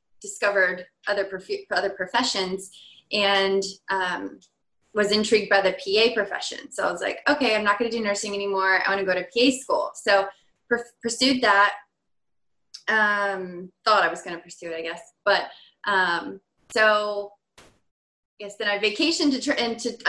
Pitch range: 195-235 Hz